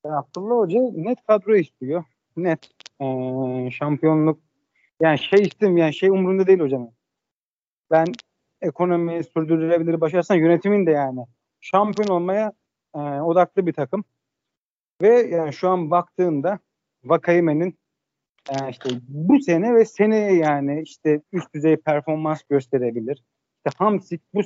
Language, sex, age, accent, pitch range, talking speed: Turkish, male, 40-59, native, 145-190 Hz, 125 wpm